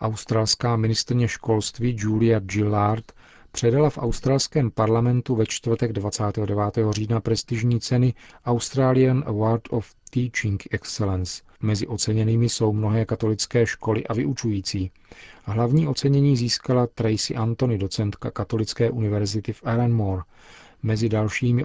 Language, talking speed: Czech, 110 wpm